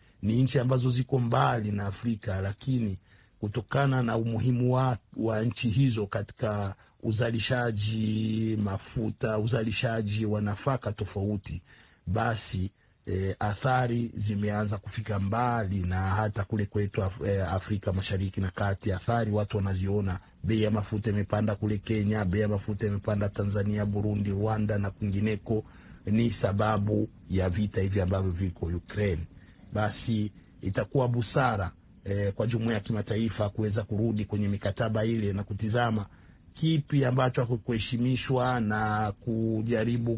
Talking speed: 120 wpm